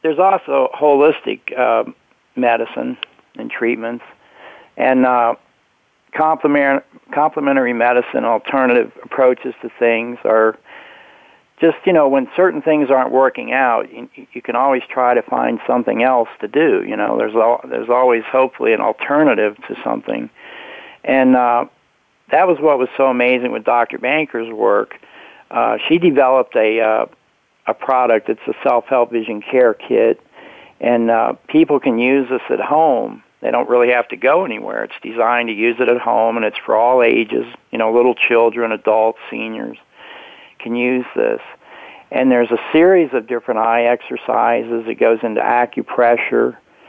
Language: English